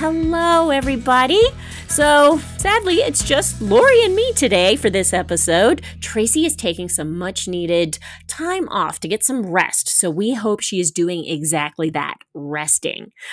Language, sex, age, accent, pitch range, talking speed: English, female, 30-49, American, 170-255 Hz, 155 wpm